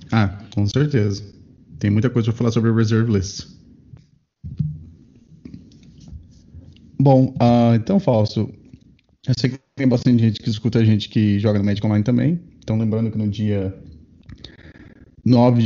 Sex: male